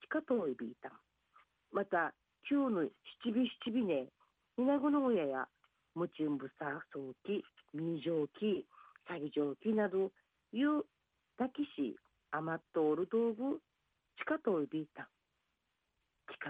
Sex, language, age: female, Japanese, 50-69